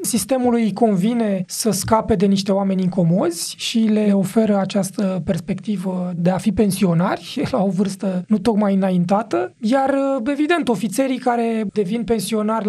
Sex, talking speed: male, 135 wpm